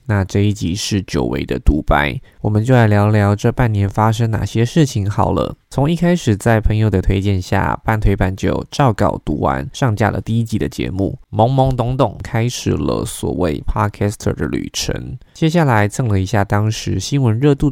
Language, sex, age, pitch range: Chinese, male, 20-39, 100-120 Hz